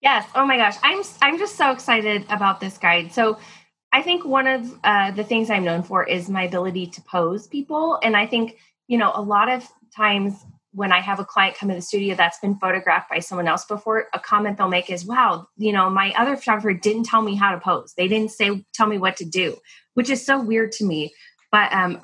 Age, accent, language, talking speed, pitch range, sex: 20-39, American, English, 235 wpm, 180-235 Hz, female